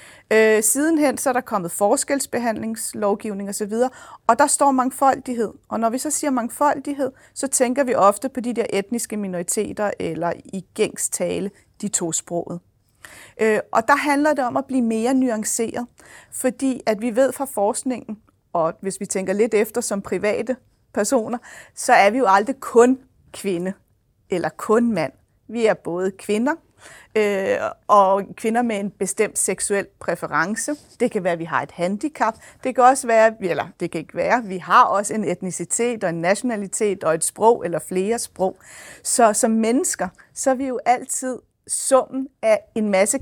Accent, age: Danish, 40-59